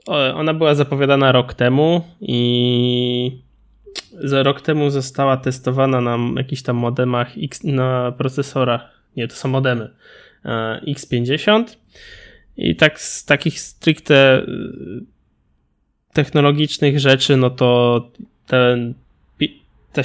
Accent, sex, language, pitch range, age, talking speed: native, male, Polish, 125-140 Hz, 20-39, 100 wpm